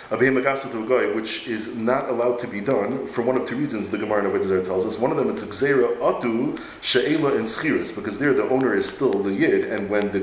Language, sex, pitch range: English, male, 120-145 Hz